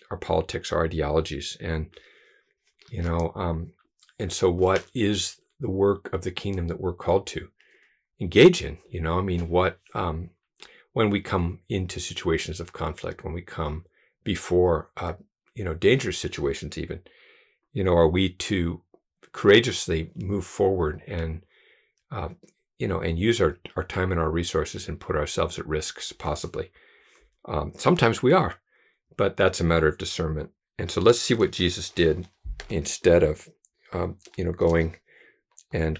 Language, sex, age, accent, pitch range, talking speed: English, male, 50-69, American, 80-95 Hz, 160 wpm